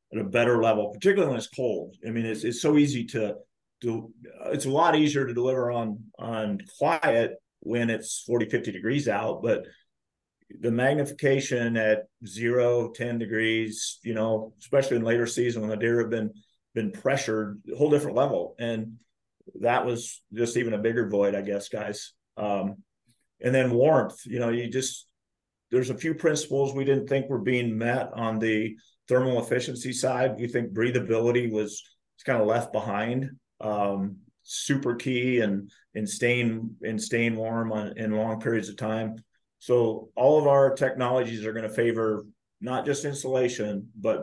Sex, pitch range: male, 110-125 Hz